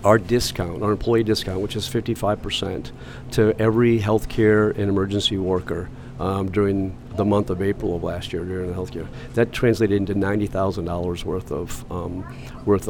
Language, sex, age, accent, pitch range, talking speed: English, male, 50-69, American, 100-115 Hz, 155 wpm